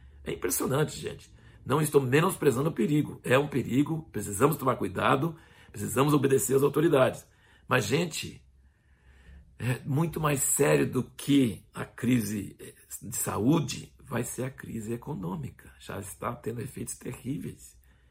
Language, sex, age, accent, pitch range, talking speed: Portuguese, male, 60-79, Brazilian, 110-145 Hz, 130 wpm